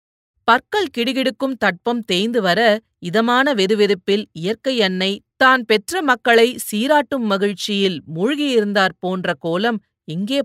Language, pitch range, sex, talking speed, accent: Tamil, 180-230 Hz, female, 105 wpm, native